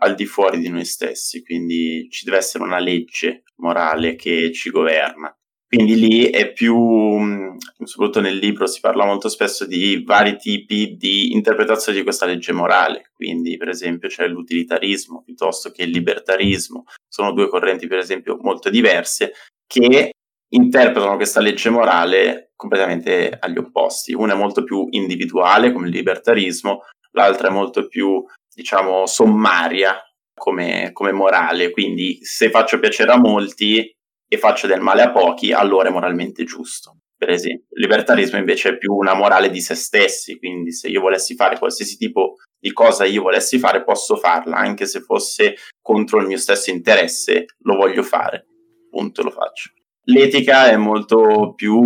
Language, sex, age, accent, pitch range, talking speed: Italian, male, 20-39, native, 90-120 Hz, 160 wpm